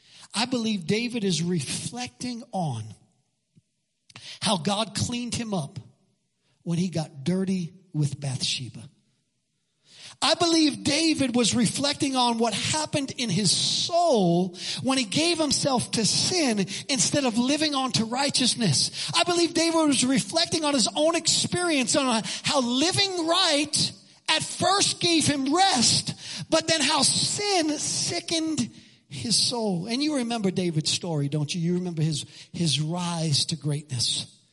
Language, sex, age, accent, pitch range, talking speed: English, male, 40-59, American, 180-245 Hz, 135 wpm